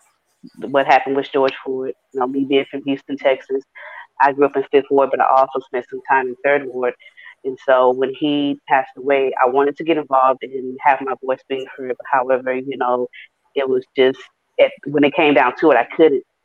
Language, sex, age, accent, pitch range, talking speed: English, female, 30-49, American, 130-140 Hz, 210 wpm